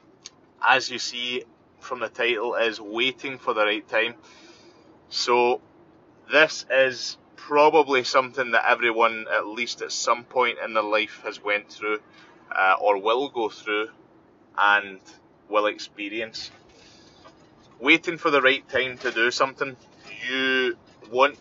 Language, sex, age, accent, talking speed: English, male, 20-39, British, 135 wpm